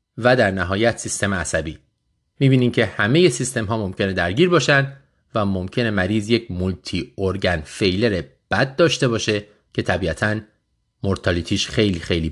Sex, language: male, Persian